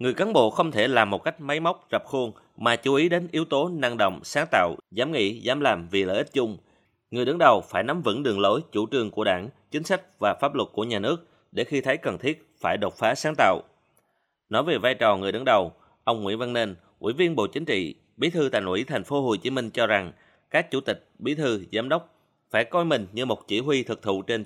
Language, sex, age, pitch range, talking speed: Vietnamese, male, 30-49, 120-170 Hz, 255 wpm